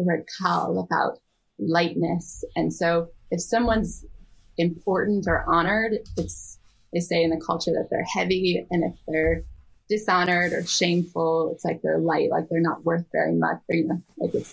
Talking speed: 170 wpm